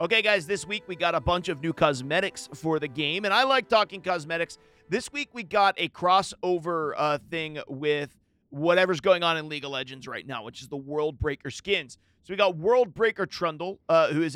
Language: English